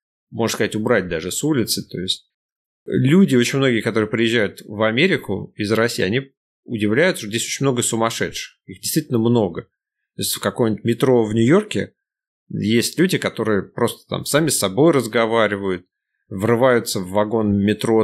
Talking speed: 155 wpm